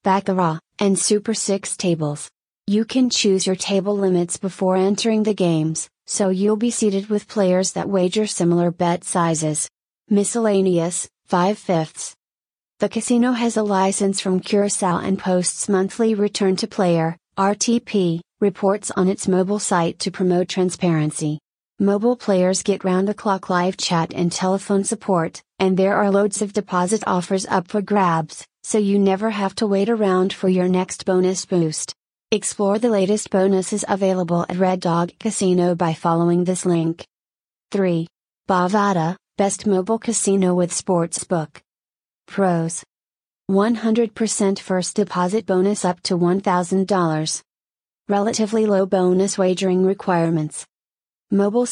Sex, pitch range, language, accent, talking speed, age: female, 180-205 Hz, English, American, 135 wpm, 40-59